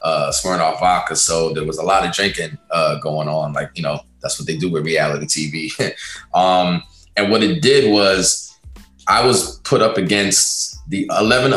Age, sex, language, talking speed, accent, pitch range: 20-39, male, English, 190 wpm, American, 90-105 Hz